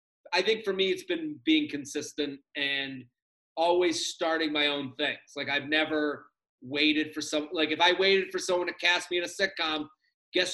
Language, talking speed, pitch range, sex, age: English, 190 wpm, 165-210 Hz, male, 30-49